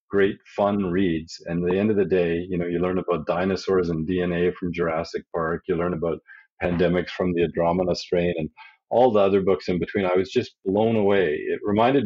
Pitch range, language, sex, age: 85-100 Hz, English, male, 40-59